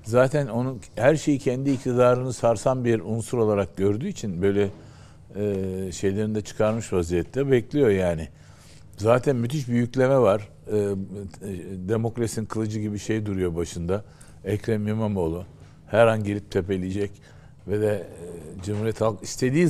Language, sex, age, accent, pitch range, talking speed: Turkish, male, 60-79, native, 90-120 Hz, 135 wpm